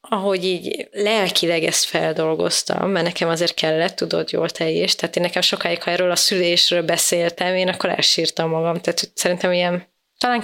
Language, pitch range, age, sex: Hungarian, 175-215 Hz, 20-39, female